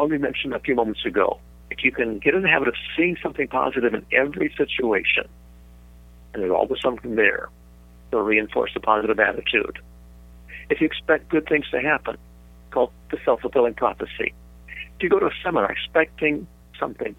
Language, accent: English, American